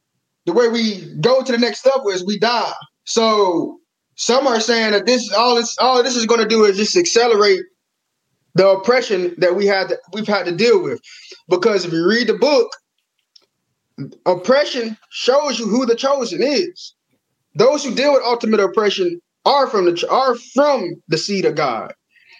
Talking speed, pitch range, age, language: 180 wpm, 190-255 Hz, 20-39, English